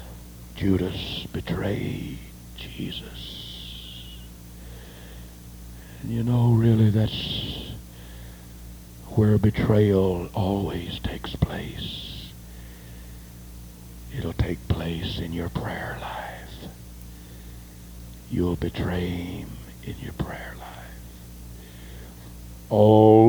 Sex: male